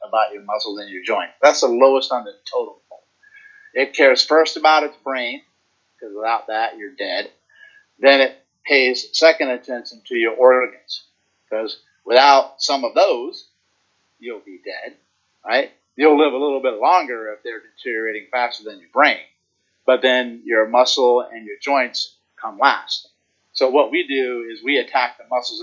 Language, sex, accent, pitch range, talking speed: English, male, American, 115-155 Hz, 165 wpm